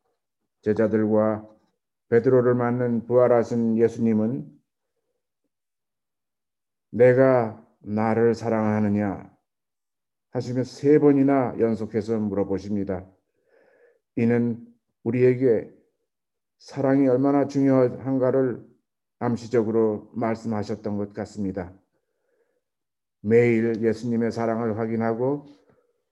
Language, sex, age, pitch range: Korean, male, 50-69, 110-125 Hz